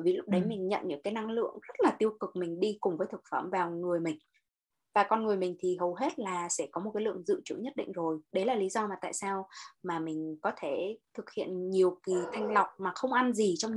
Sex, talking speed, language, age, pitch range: female, 270 wpm, Vietnamese, 20-39, 175-235 Hz